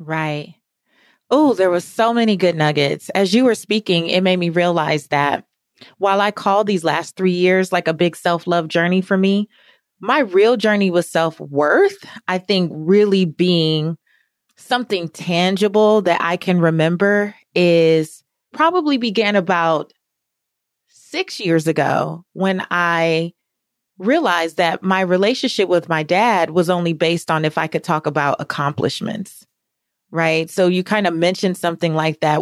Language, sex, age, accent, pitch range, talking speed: English, female, 30-49, American, 160-205 Hz, 155 wpm